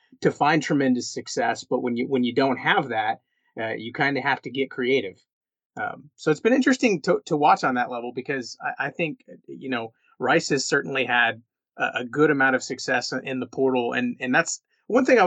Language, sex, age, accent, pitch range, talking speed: English, male, 30-49, American, 125-150 Hz, 220 wpm